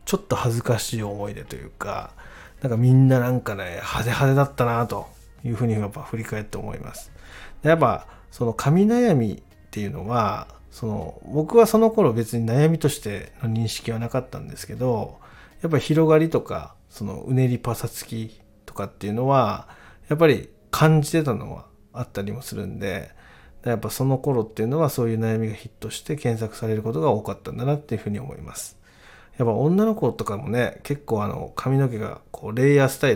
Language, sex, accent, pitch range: Japanese, male, native, 110-135 Hz